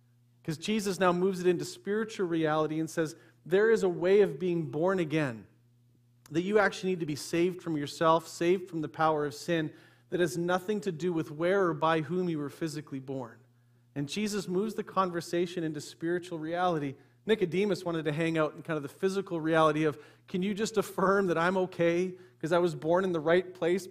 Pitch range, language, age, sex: 155-185 Hz, English, 40-59, male